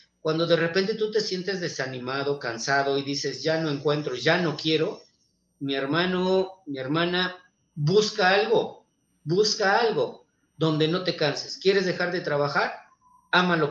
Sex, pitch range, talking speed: male, 160-220 Hz, 150 wpm